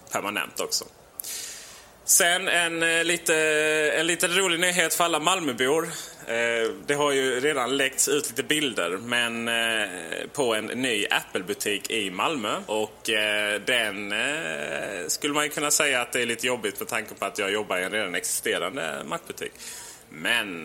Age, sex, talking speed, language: 30-49, male, 150 wpm, Swedish